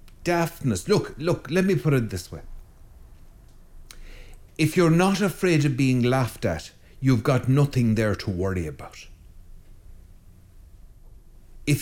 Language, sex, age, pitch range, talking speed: English, male, 60-79, 95-145 Hz, 120 wpm